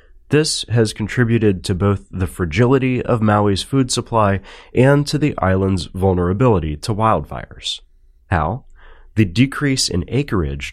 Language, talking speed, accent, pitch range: English, 130 wpm, American, 85-115 Hz